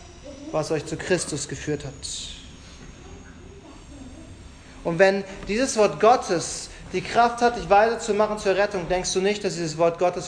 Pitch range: 170-230 Hz